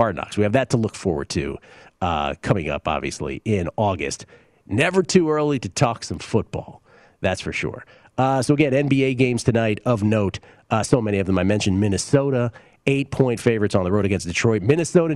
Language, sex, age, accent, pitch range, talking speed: English, male, 40-59, American, 100-135 Hz, 190 wpm